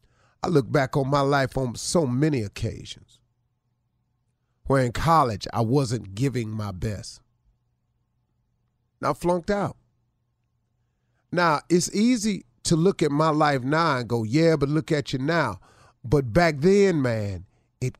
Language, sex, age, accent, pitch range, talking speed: English, male, 40-59, American, 120-165 Hz, 145 wpm